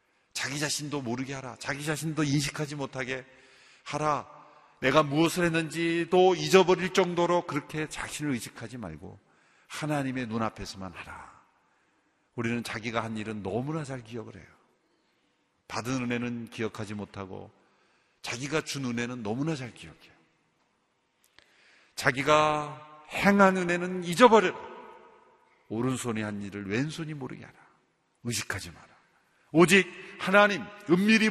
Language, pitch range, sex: Korean, 115-155 Hz, male